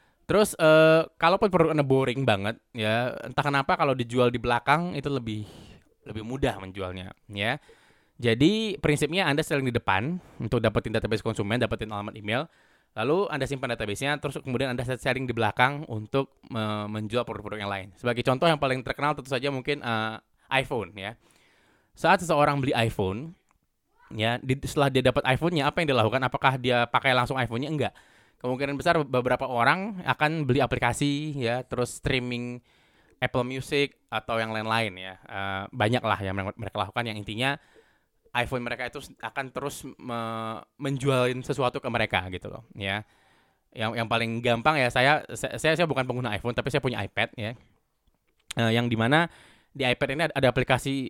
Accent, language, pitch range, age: native, Indonesian, 115-140 Hz, 20-39